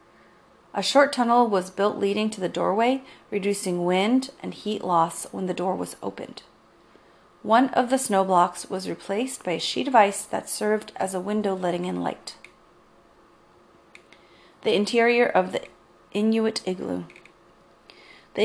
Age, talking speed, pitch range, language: 30-49, 150 wpm, 195-240 Hz, English